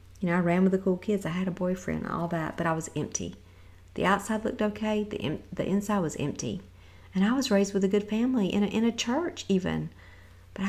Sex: female